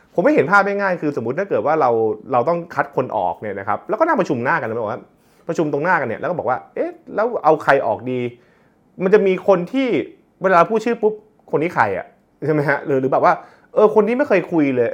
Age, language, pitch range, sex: 20-39, Thai, 115-165 Hz, male